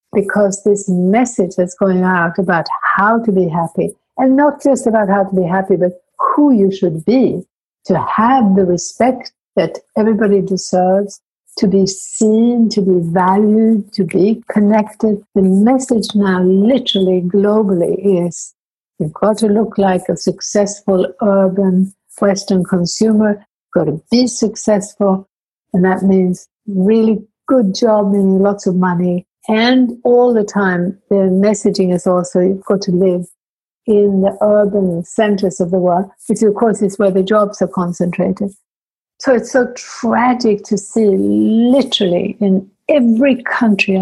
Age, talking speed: 60-79, 150 wpm